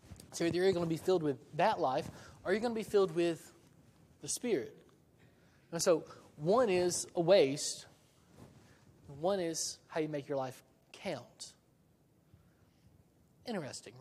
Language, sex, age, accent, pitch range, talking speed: English, male, 20-39, American, 145-185 Hz, 150 wpm